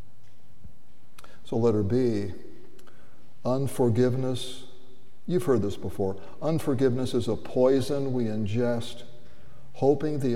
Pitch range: 110-140 Hz